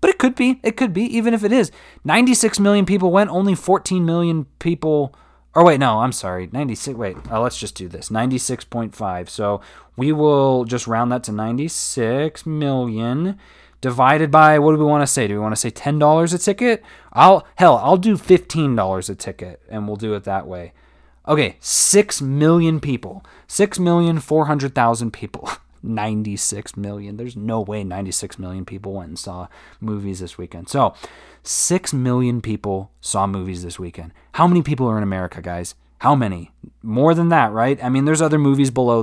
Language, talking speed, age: English, 190 wpm, 20-39